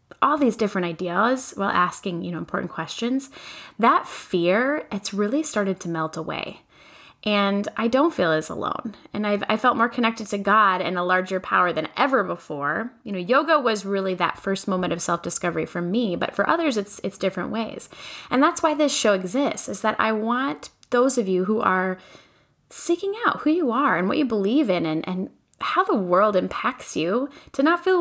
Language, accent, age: English, American, 10-29